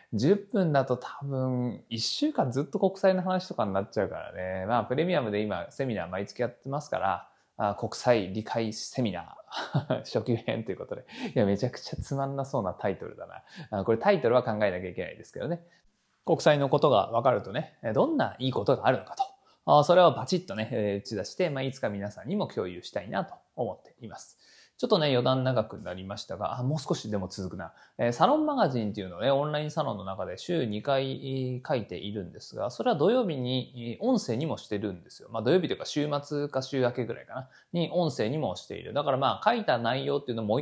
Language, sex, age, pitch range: Japanese, male, 20-39, 115-175 Hz